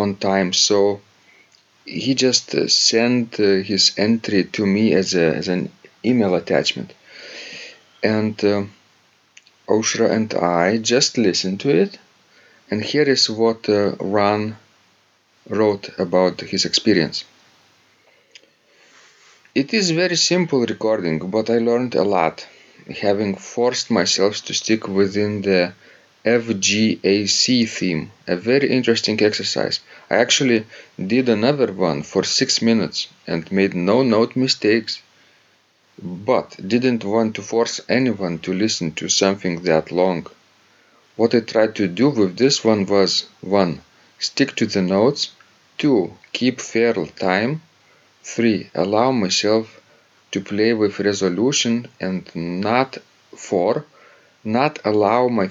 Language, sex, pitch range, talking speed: English, male, 100-120 Hz, 125 wpm